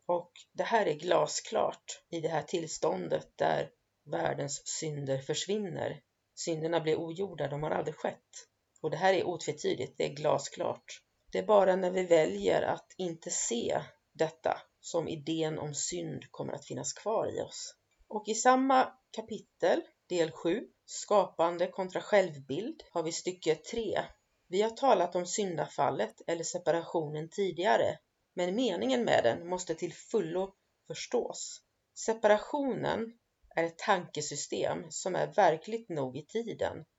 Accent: native